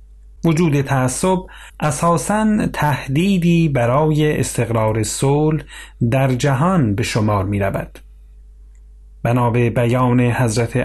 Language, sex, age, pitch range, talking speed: Persian, male, 30-49, 115-150 Hz, 85 wpm